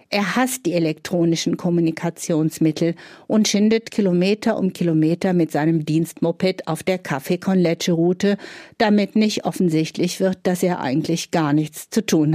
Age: 50-69